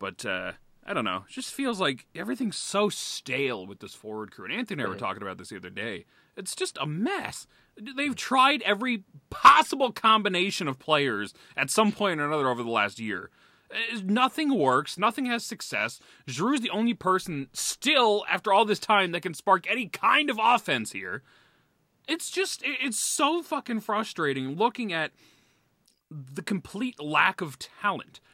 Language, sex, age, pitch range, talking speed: English, male, 30-49, 180-285 Hz, 175 wpm